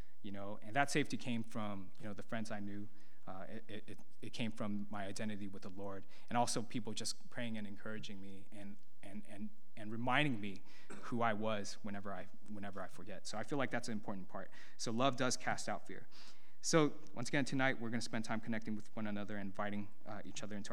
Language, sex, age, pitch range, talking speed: English, male, 20-39, 105-135 Hz, 225 wpm